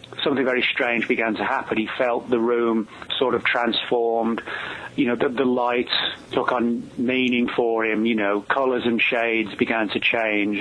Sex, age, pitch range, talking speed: male, 30-49, 115-135 Hz, 175 wpm